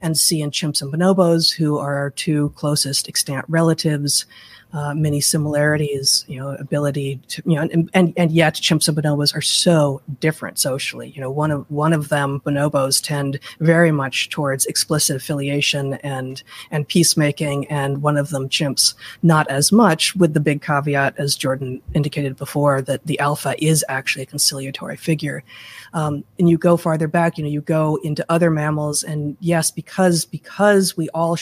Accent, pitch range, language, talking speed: American, 140-165 Hz, English, 180 wpm